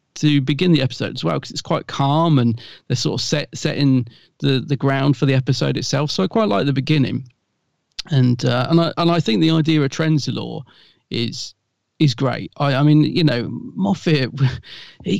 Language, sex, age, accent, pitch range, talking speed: English, male, 40-59, British, 130-160 Hz, 195 wpm